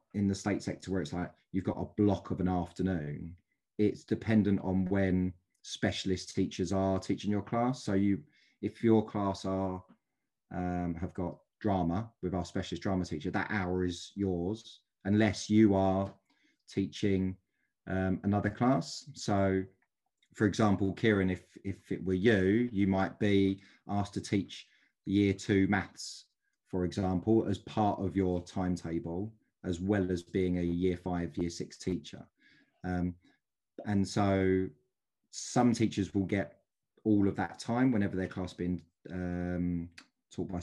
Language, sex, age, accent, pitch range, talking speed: English, male, 20-39, British, 90-105 Hz, 150 wpm